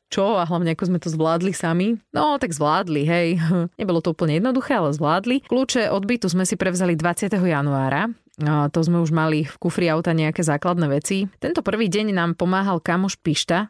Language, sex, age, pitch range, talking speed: Slovak, female, 30-49, 155-195 Hz, 190 wpm